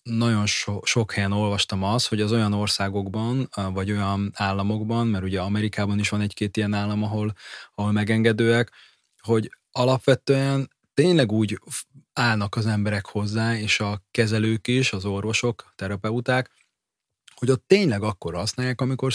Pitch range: 100-115 Hz